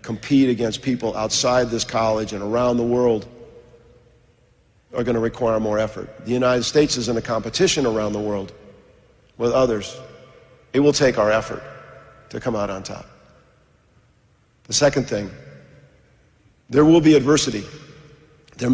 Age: 50-69